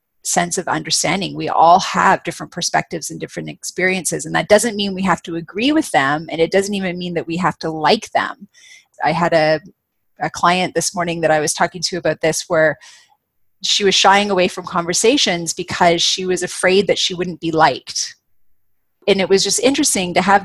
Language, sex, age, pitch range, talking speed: English, female, 30-49, 160-195 Hz, 205 wpm